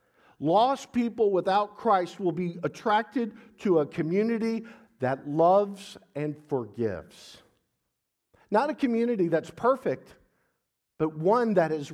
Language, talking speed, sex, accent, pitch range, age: English, 115 wpm, male, American, 150-225 Hz, 50-69